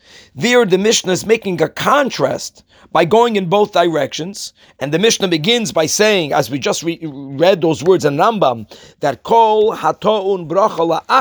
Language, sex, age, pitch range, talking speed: English, male, 40-59, 170-220 Hz, 160 wpm